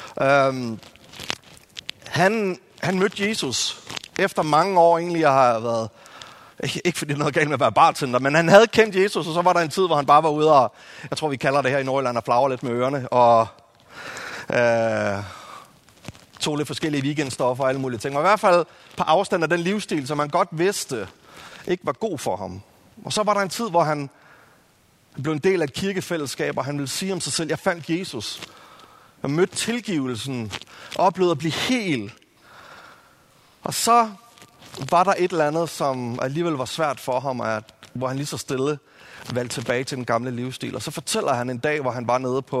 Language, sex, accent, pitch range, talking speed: Danish, male, native, 125-170 Hz, 205 wpm